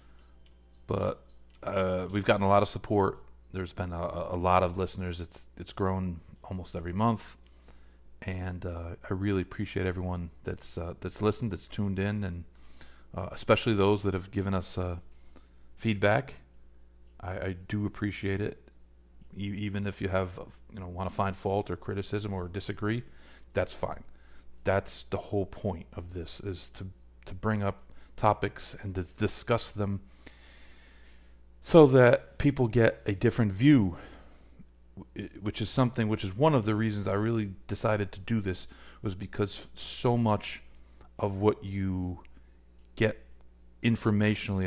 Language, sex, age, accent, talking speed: English, male, 40-59, American, 150 wpm